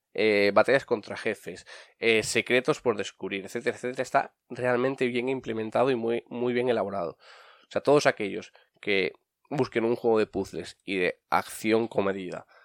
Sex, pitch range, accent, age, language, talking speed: male, 110-135 Hz, Spanish, 20-39, English, 155 wpm